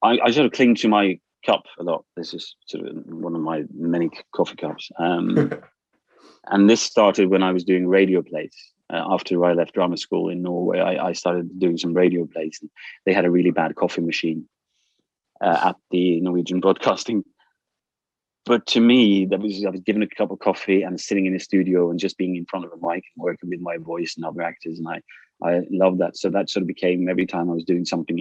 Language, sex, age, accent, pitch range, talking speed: English, male, 30-49, British, 85-95 Hz, 230 wpm